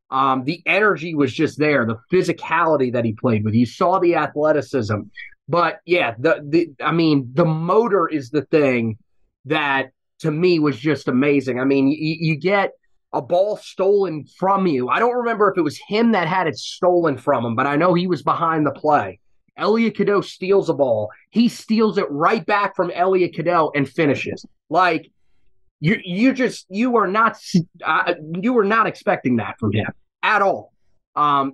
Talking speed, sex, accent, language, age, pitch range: 175 wpm, male, American, English, 30-49, 145-190 Hz